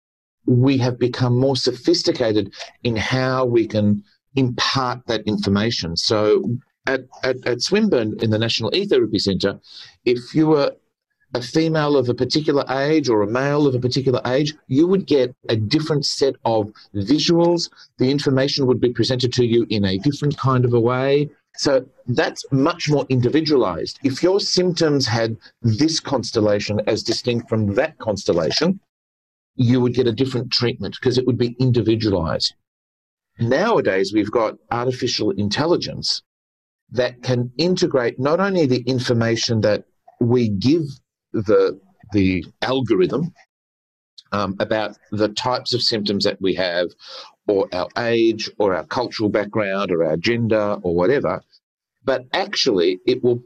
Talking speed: 145 wpm